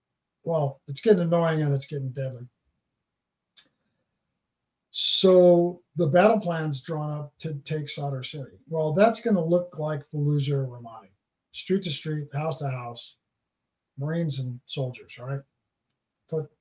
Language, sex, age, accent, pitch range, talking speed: English, male, 50-69, American, 135-175 Hz, 135 wpm